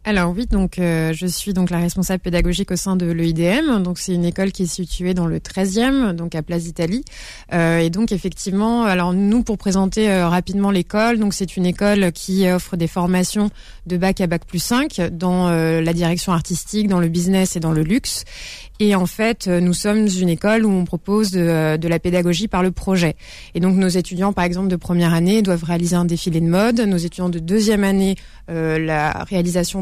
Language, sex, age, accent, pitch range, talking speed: French, female, 20-39, French, 175-205 Hz, 210 wpm